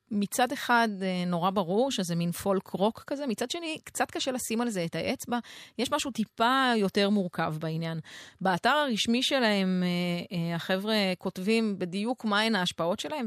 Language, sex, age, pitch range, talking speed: Hebrew, female, 30-49, 175-215 Hz, 145 wpm